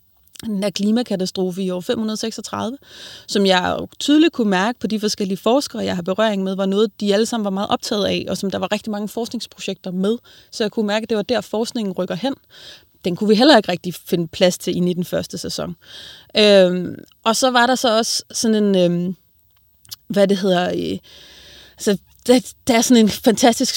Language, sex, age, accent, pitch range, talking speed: Danish, female, 30-49, native, 185-225 Hz, 200 wpm